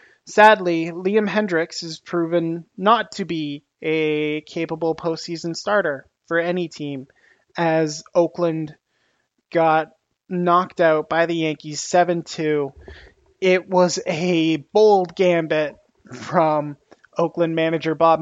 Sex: male